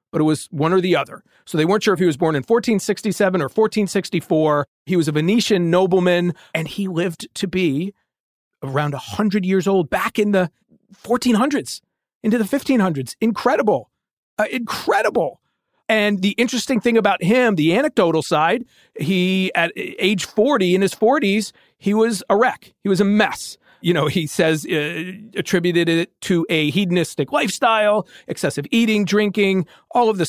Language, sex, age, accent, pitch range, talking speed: English, male, 40-59, American, 160-210 Hz, 165 wpm